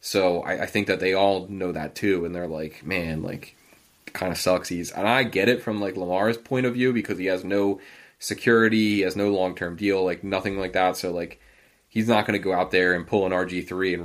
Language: English